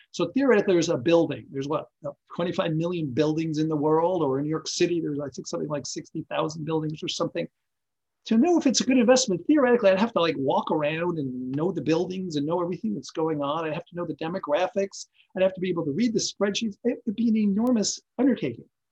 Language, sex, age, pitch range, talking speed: English, male, 40-59, 160-225 Hz, 230 wpm